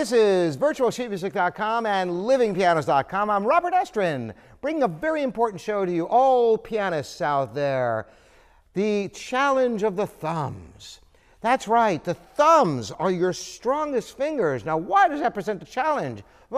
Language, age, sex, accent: English, 50-69, male, American